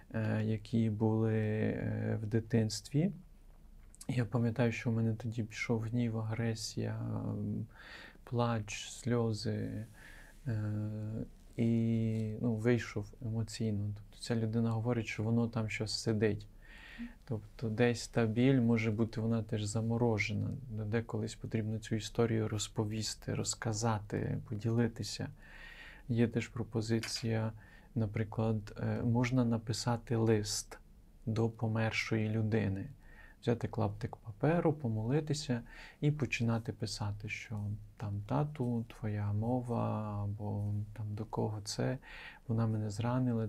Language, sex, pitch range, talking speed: Ukrainian, male, 110-120 Hz, 100 wpm